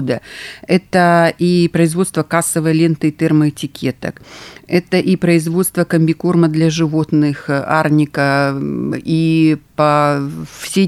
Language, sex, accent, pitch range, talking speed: Russian, female, native, 150-170 Hz, 95 wpm